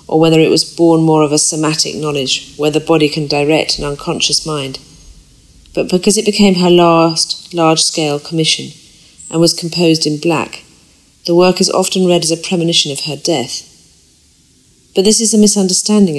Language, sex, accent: Portuguese, female, British